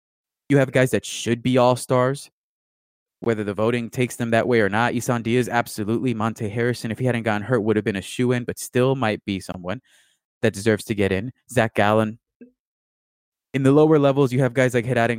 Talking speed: 215 wpm